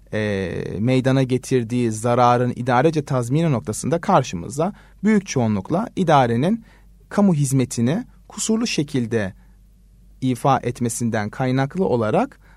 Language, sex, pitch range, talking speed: Turkish, male, 120-185 Hz, 90 wpm